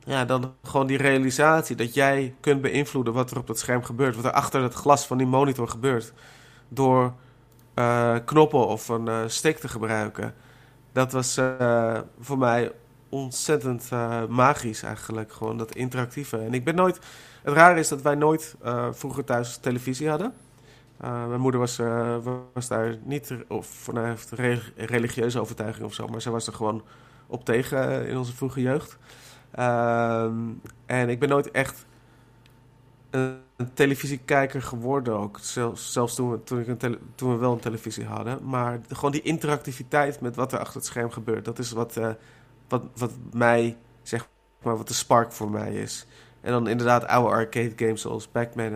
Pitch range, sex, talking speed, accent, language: 115-130 Hz, male, 175 wpm, Dutch, Dutch